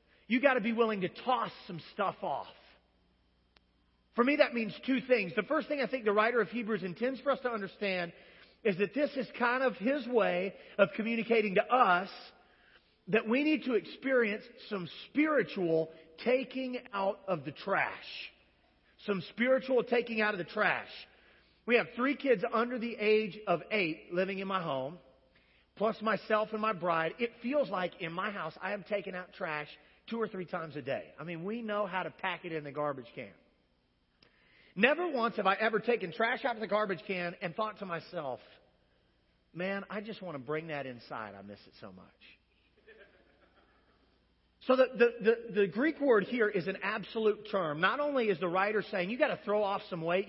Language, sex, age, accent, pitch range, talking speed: English, male, 40-59, American, 180-240 Hz, 195 wpm